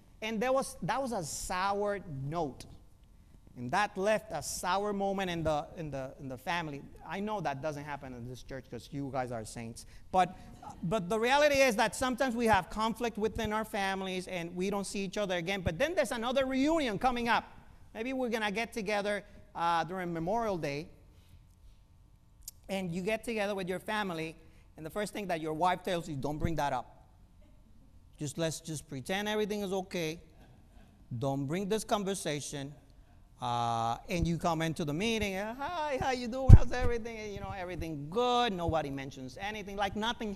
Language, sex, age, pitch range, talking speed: English, male, 40-59, 130-210 Hz, 185 wpm